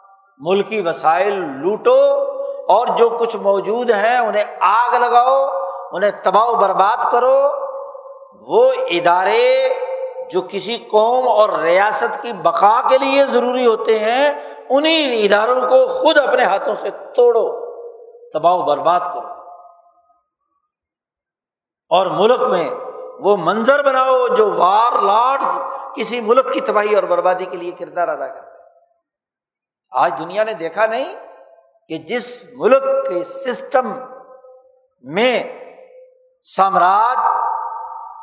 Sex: male